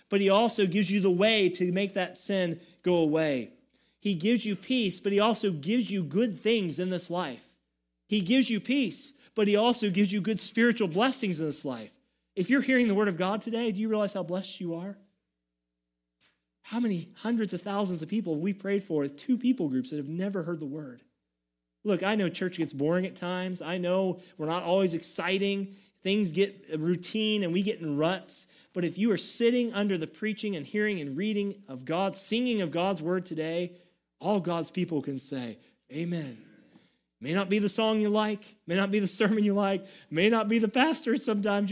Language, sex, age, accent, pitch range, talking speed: English, male, 30-49, American, 160-210 Hz, 210 wpm